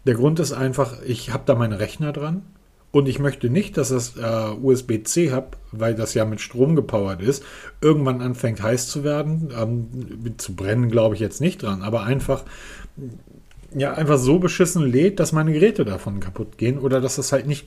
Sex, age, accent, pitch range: male, 40-59, German, 120-155 Hz